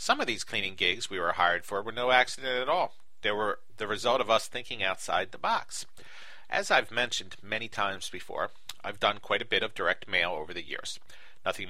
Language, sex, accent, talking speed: English, male, American, 215 wpm